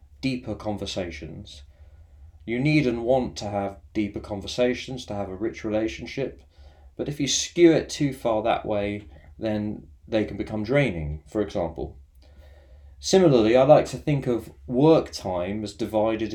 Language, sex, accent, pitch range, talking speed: English, male, British, 80-130 Hz, 150 wpm